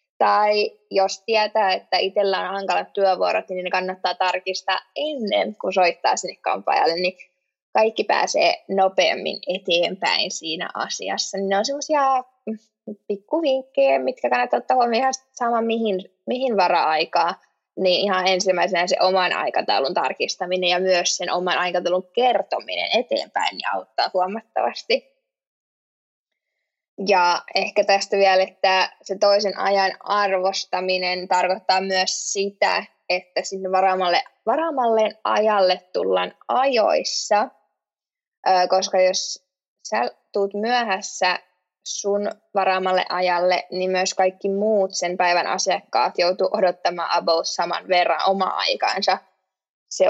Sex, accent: female, native